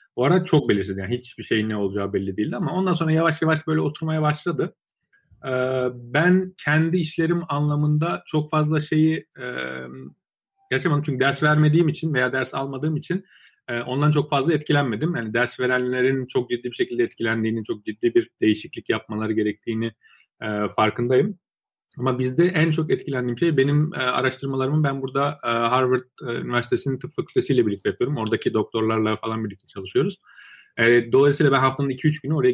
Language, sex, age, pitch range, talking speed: Turkish, male, 30-49, 110-155 Hz, 155 wpm